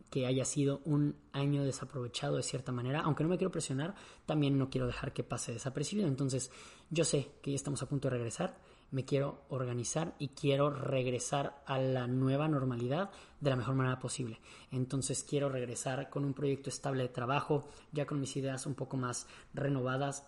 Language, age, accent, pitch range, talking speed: Spanish, 20-39, Mexican, 130-145 Hz, 185 wpm